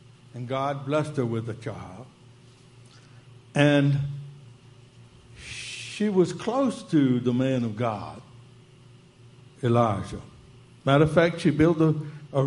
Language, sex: English, male